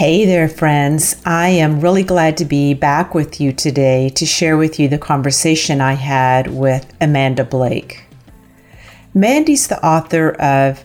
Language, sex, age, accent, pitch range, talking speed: English, female, 50-69, American, 140-180 Hz, 155 wpm